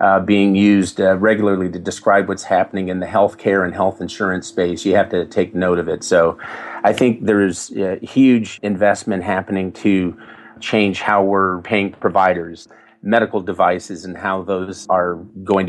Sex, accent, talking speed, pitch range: male, American, 170 wpm, 90-100 Hz